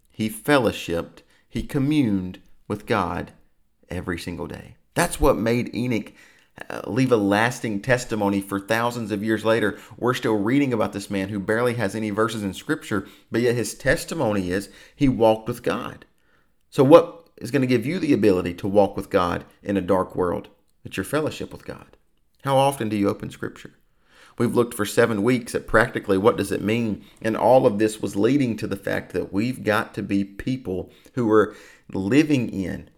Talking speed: 185 wpm